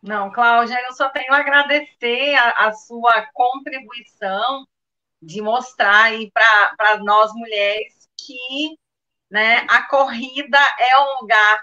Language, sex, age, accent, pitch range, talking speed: Portuguese, female, 40-59, Brazilian, 210-260 Hz, 120 wpm